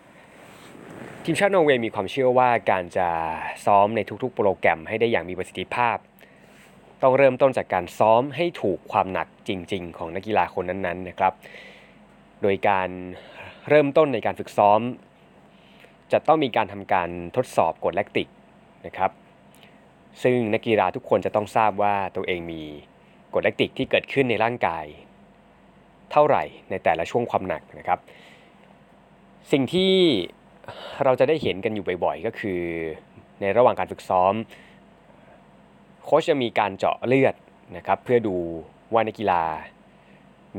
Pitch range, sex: 90-125 Hz, male